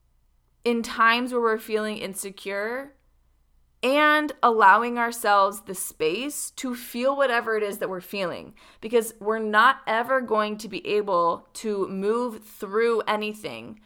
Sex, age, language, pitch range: female, 20-39, English, 195-235 Hz